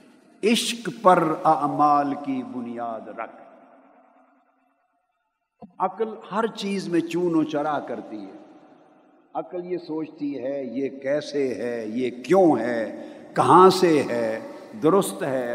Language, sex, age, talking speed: Urdu, male, 50-69, 115 wpm